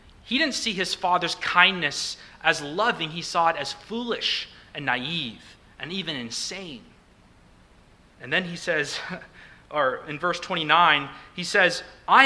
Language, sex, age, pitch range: English, male, 30-49, 150-215 Hz